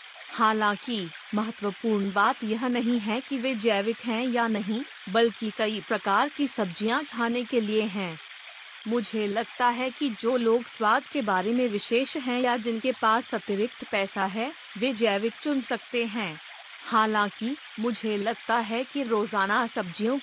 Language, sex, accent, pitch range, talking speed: Hindi, female, native, 210-245 Hz, 150 wpm